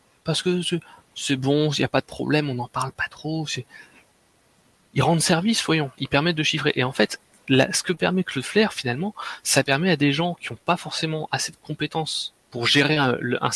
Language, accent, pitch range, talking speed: French, French, 130-175 Hz, 220 wpm